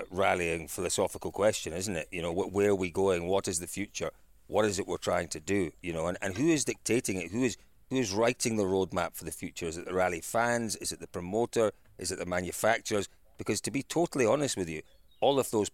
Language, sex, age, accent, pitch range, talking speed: English, male, 40-59, British, 90-120 Hz, 240 wpm